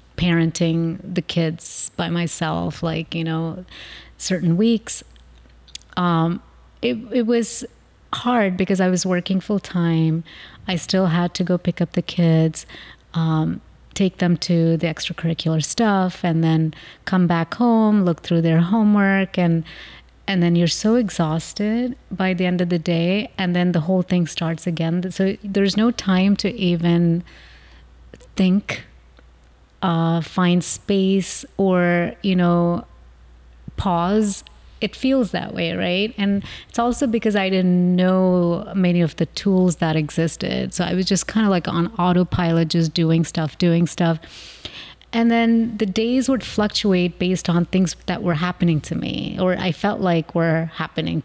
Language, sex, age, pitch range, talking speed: English, female, 30-49, 165-195 Hz, 155 wpm